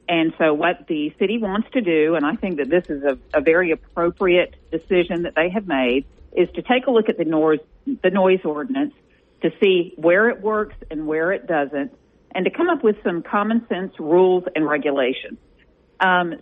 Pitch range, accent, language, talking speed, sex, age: 160-215 Hz, American, English, 200 wpm, female, 50-69